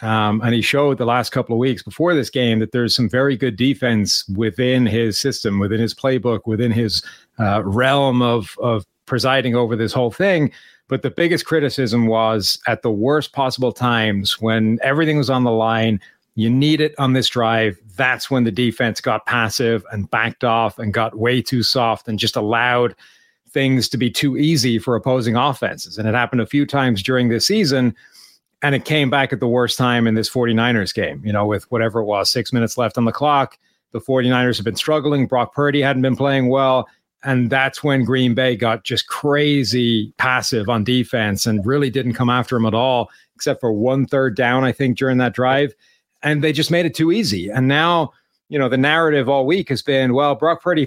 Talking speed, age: 205 wpm, 40-59